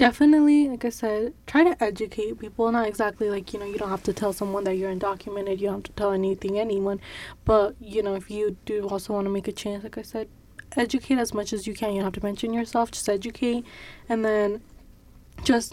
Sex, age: female, 10-29